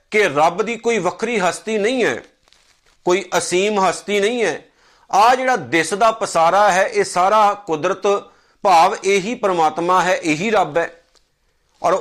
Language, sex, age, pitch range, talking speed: Punjabi, male, 50-69, 170-225 Hz, 145 wpm